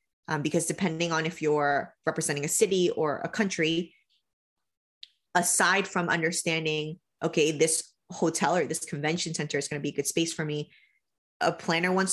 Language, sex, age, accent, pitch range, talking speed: English, female, 20-39, American, 160-190 Hz, 170 wpm